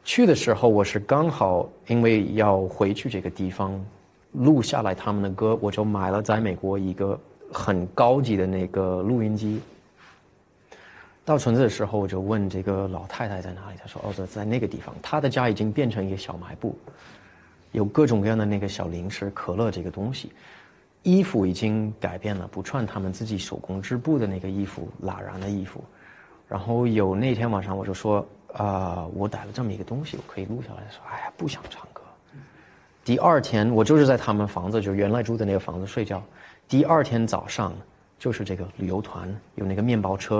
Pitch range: 95-110 Hz